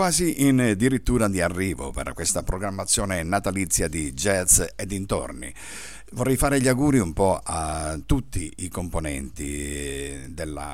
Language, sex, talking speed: Italian, male, 130 wpm